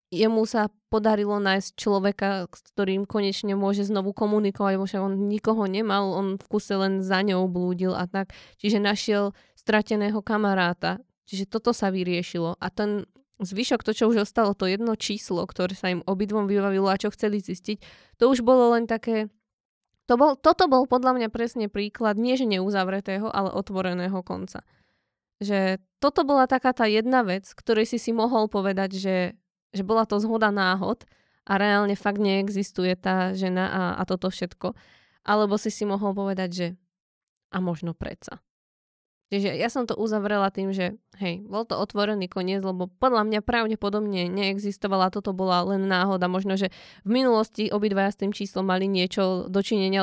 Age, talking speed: 20-39, 165 wpm